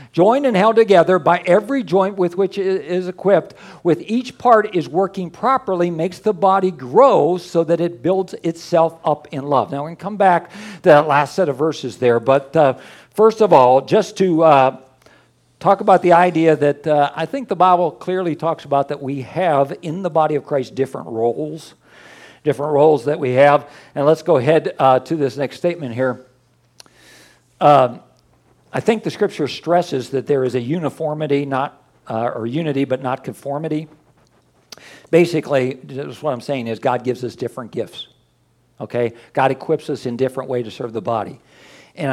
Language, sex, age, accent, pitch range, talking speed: English, male, 50-69, American, 130-170 Hz, 185 wpm